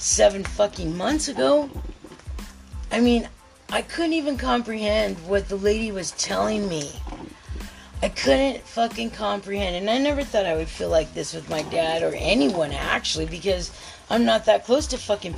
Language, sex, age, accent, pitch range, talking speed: English, female, 30-49, American, 160-220 Hz, 165 wpm